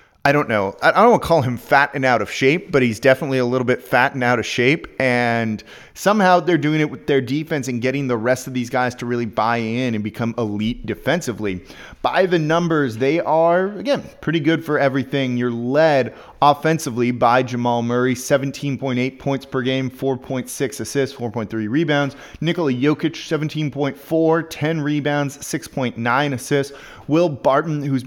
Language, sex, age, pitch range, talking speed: English, male, 20-39, 120-150 Hz, 170 wpm